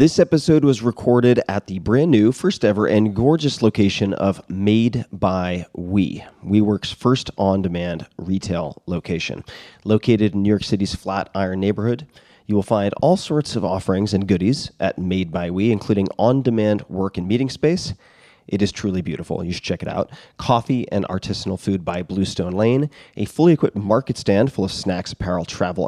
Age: 30-49